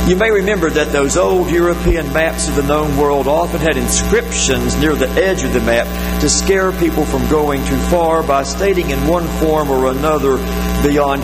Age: 50-69